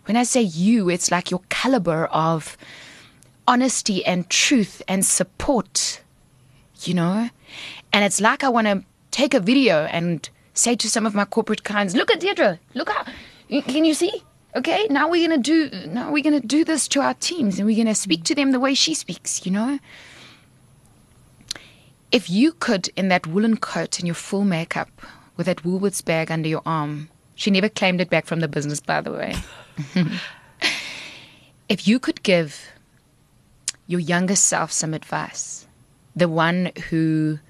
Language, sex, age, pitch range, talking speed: English, female, 20-39, 160-220 Hz, 170 wpm